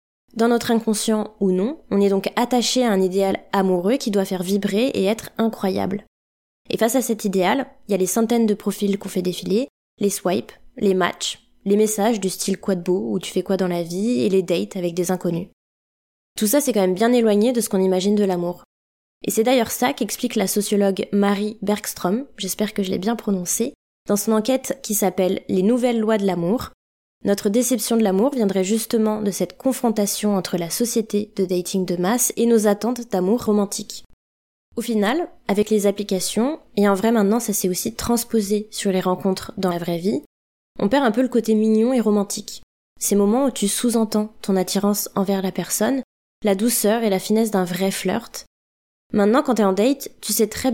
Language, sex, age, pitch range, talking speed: French, female, 20-39, 195-230 Hz, 210 wpm